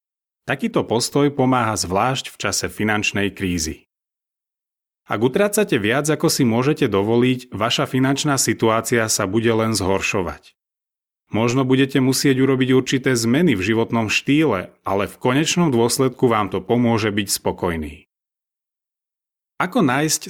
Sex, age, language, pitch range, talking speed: male, 30-49, Slovak, 105-140 Hz, 125 wpm